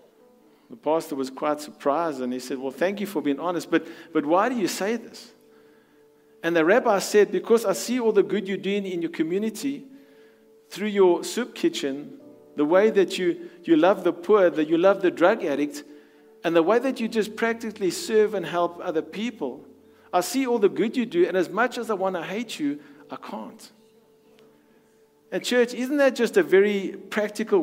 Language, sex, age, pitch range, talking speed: English, male, 50-69, 170-230 Hz, 200 wpm